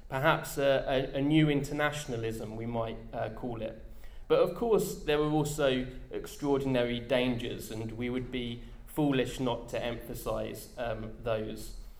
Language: English